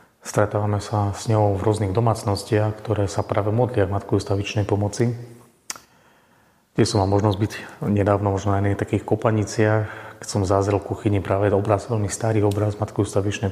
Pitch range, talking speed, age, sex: 105-120 Hz, 170 wpm, 30-49, male